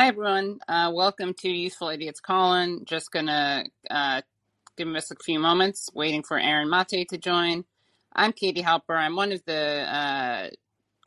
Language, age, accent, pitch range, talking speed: English, 30-49, American, 155-180 Hz, 165 wpm